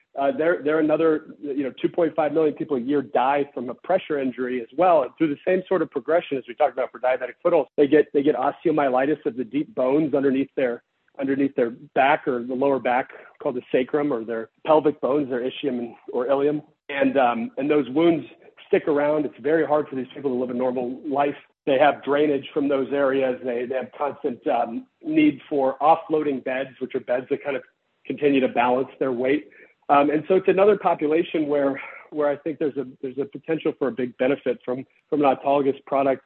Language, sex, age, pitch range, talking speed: English, male, 40-59, 135-155 Hz, 210 wpm